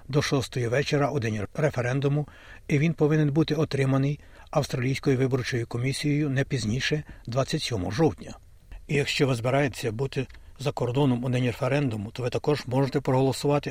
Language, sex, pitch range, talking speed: Ukrainian, male, 115-145 Hz, 145 wpm